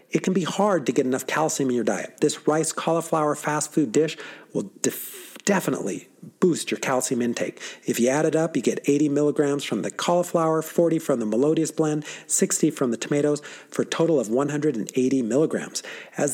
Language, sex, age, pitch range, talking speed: English, male, 40-59, 145-190 Hz, 185 wpm